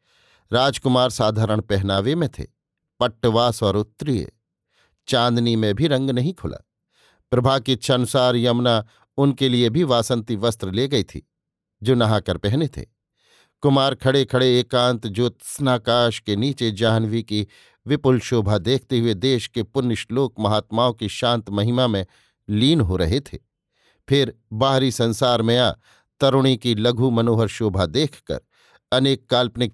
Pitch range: 110-135 Hz